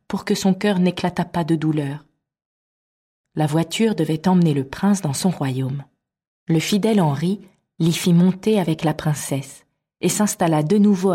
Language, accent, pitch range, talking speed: French, French, 150-195 Hz, 160 wpm